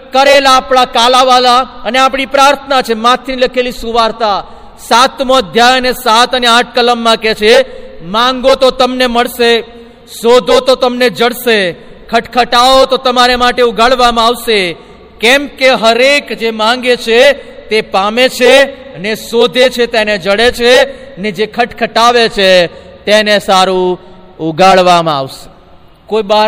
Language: Gujarati